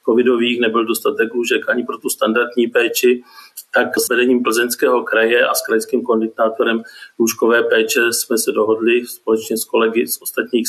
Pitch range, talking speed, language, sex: 115-135 Hz, 155 wpm, Czech, male